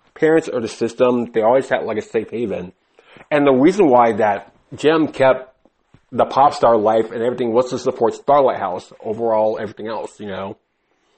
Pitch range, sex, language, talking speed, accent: 105-130 Hz, male, English, 185 wpm, American